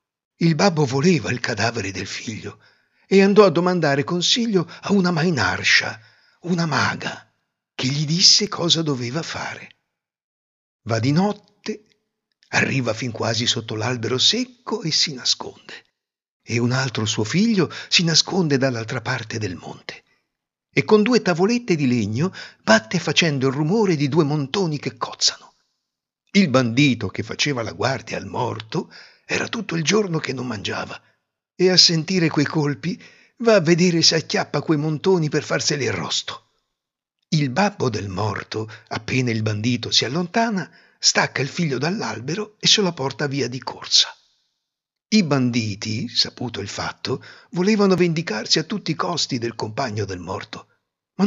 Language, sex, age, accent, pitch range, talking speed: Italian, male, 60-79, native, 125-190 Hz, 150 wpm